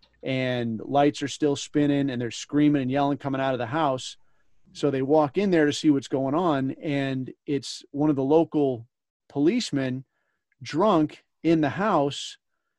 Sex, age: male, 30-49